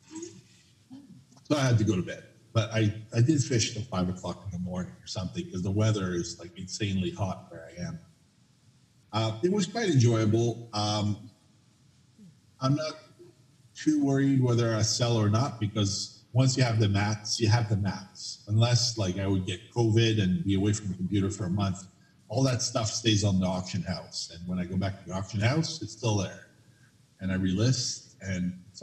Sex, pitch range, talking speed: male, 100-125 Hz, 200 wpm